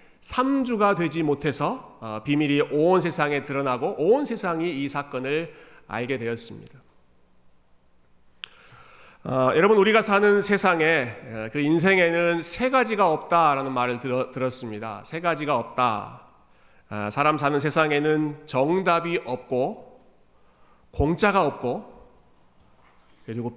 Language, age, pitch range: Korean, 40-59, 130-185 Hz